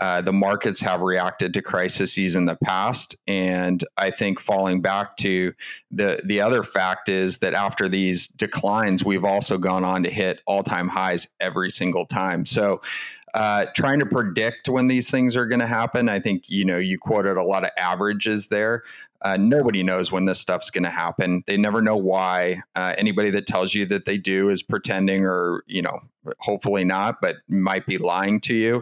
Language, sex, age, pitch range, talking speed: English, male, 30-49, 95-105 Hz, 195 wpm